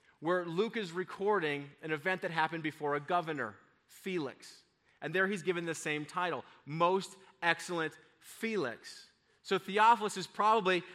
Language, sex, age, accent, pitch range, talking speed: English, male, 30-49, American, 140-200 Hz, 140 wpm